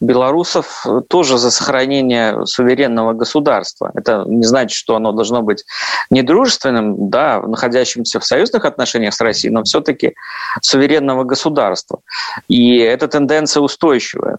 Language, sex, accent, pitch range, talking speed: Russian, male, native, 125-165 Hz, 120 wpm